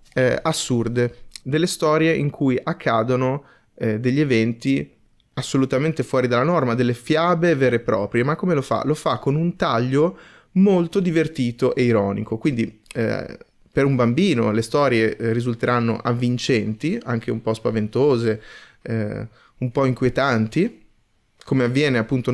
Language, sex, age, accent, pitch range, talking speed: Italian, male, 30-49, native, 120-170 Hz, 140 wpm